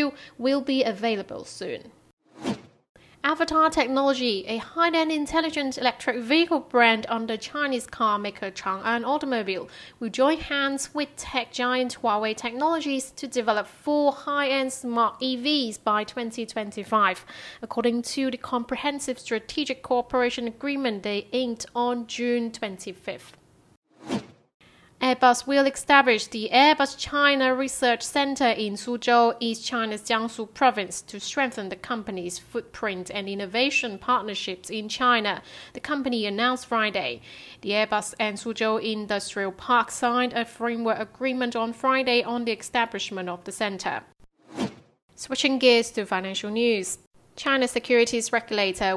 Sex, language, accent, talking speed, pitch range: female, English, British, 125 wpm, 210-260 Hz